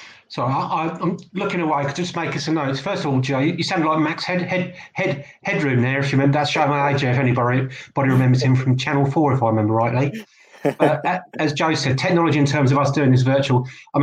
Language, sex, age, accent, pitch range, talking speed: English, male, 30-49, British, 130-155 Hz, 245 wpm